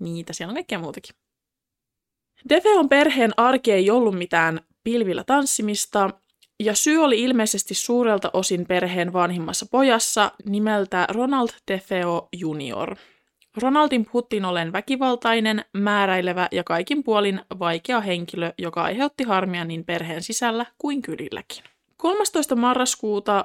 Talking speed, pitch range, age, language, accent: 115 wpm, 180-240 Hz, 20-39, Finnish, native